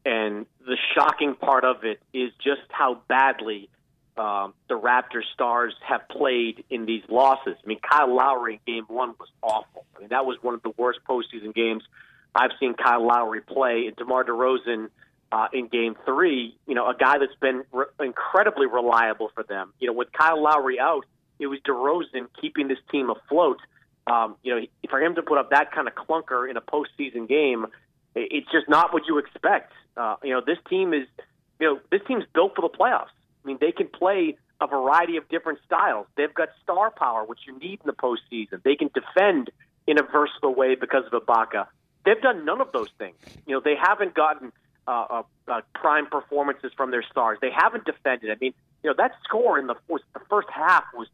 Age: 30-49